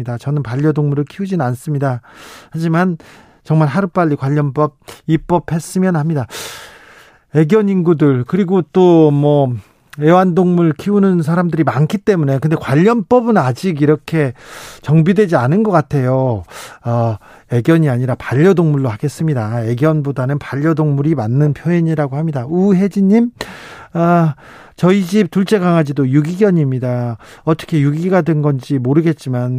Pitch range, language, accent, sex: 135-170 Hz, Korean, native, male